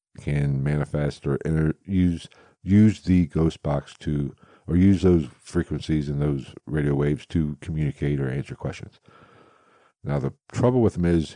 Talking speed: 155 wpm